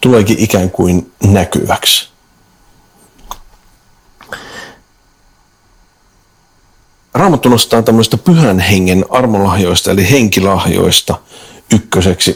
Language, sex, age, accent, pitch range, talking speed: Finnish, male, 50-69, native, 95-120 Hz, 65 wpm